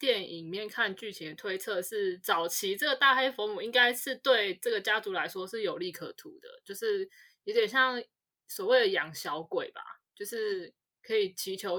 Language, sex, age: Chinese, female, 20-39